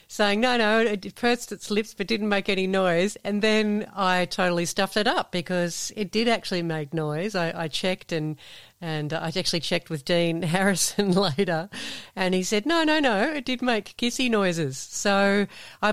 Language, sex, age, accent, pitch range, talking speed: English, female, 40-59, Australian, 155-195 Hz, 190 wpm